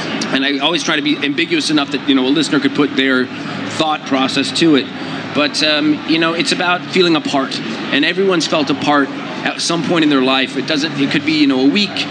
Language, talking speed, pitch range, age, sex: English, 235 wpm, 150-205 Hz, 30-49, male